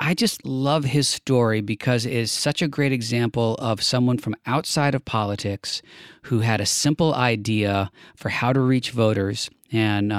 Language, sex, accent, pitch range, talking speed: English, male, American, 105-125 Hz, 170 wpm